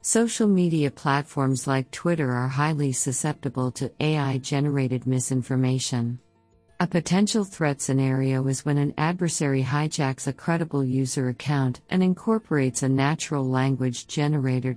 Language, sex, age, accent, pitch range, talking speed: English, female, 50-69, American, 130-150 Hz, 120 wpm